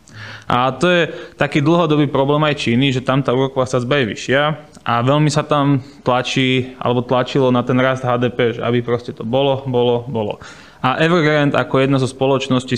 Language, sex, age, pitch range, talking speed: Slovak, male, 20-39, 125-145 Hz, 185 wpm